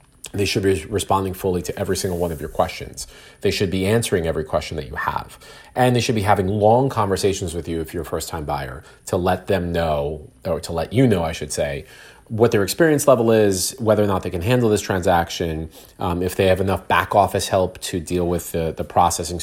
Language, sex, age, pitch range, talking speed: English, male, 30-49, 90-115 Hz, 230 wpm